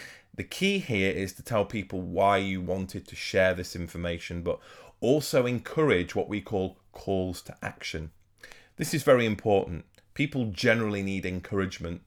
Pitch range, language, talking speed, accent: 95-115 Hz, English, 155 wpm, British